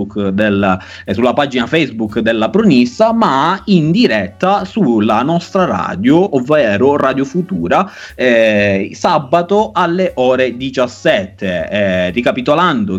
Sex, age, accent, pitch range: male, 30-49, native, 115-180 Hz